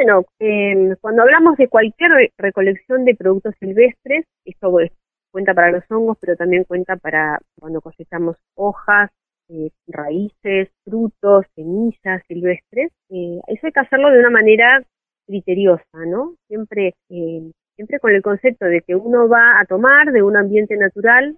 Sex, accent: female, Argentinian